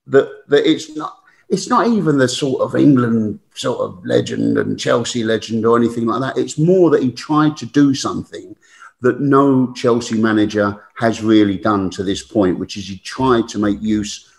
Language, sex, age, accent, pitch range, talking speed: English, male, 50-69, British, 110-140 Hz, 190 wpm